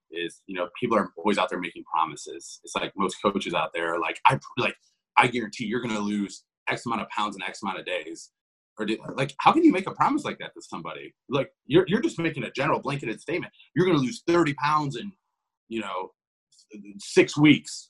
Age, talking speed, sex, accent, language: 30-49, 220 wpm, male, American, English